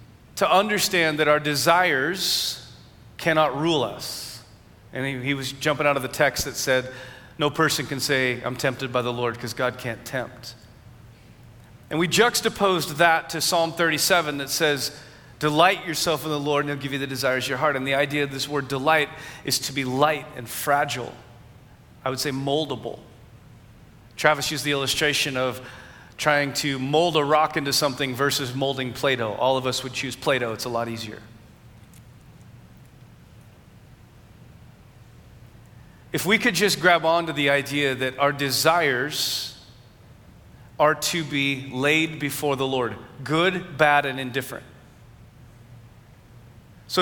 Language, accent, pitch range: English, American, 125-150 Hz